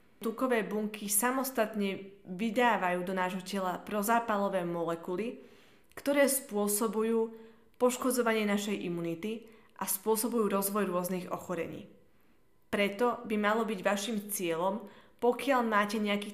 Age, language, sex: 20-39, Slovak, female